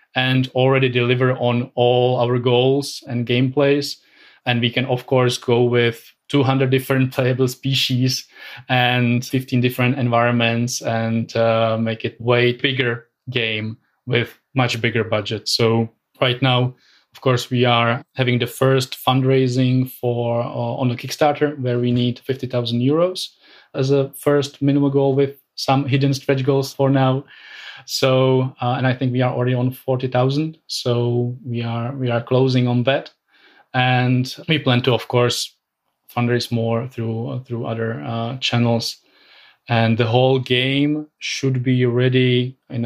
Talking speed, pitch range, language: 150 wpm, 120-135 Hz, German